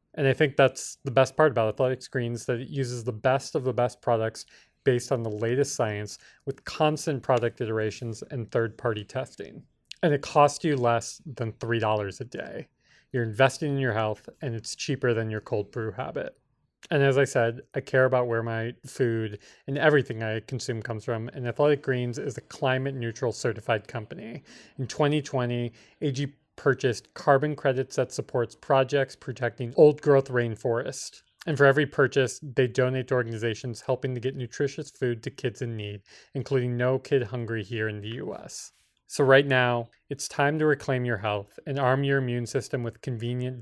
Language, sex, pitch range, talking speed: English, male, 115-140 Hz, 180 wpm